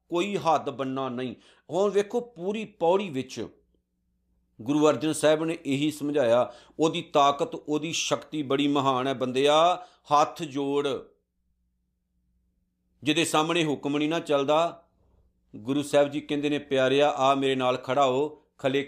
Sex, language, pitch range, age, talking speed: male, Punjabi, 130-175 Hz, 50-69, 135 wpm